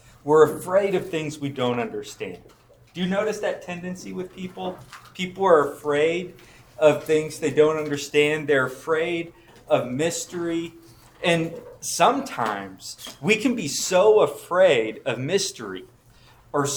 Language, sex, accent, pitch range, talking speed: English, male, American, 125-180 Hz, 130 wpm